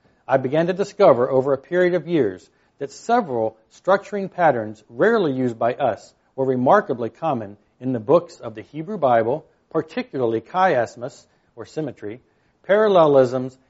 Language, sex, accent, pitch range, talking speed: English, male, American, 115-165 Hz, 140 wpm